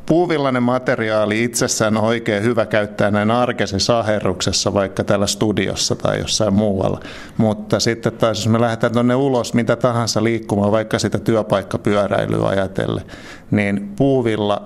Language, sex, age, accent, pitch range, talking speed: Finnish, male, 50-69, native, 105-120 Hz, 135 wpm